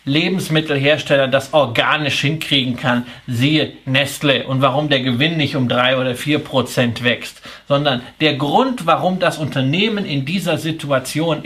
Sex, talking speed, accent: male, 140 wpm, German